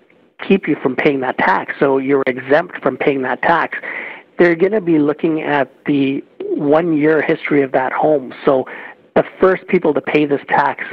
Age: 50-69